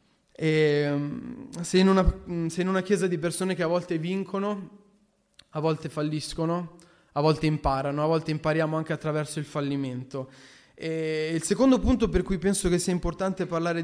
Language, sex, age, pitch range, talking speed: Italian, male, 20-39, 150-185 Hz, 155 wpm